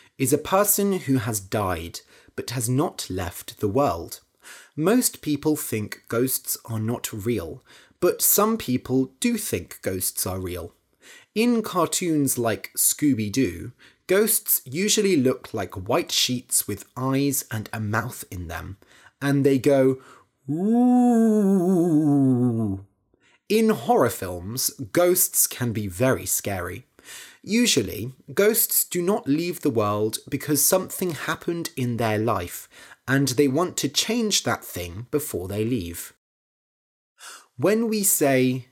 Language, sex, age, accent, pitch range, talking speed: English, male, 30-49, British, 110-170 Hz, 125 wpm